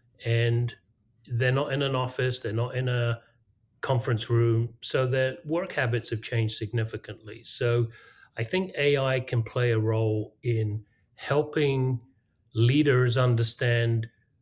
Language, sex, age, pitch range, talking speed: English, male, 40-59, 115-130 Hz, 130 wpm